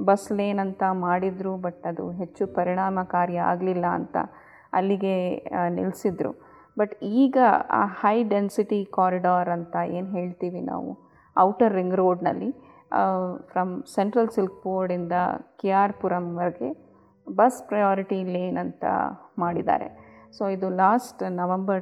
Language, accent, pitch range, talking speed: Kannada, native, 175-200 Hz, 105 wpm